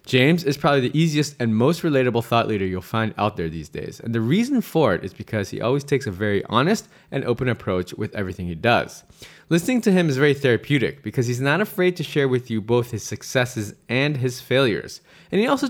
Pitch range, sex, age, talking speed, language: 110-150 Hz, male, 20-39, 225 wpm, English